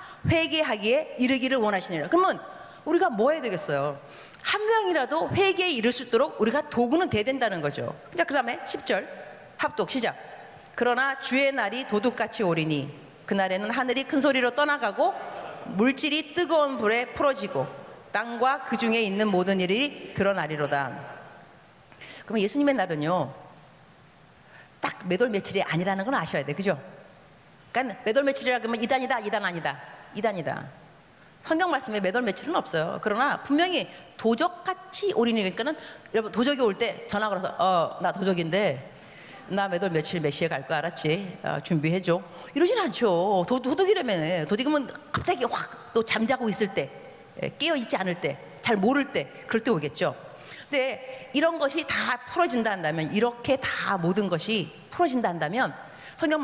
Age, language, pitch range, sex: 40-59, Korean, 185-275 Hz, female